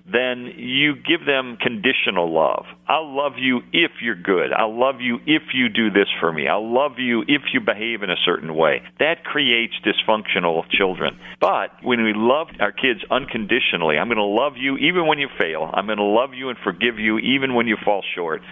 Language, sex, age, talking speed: English, male, 50-69, 205 wpm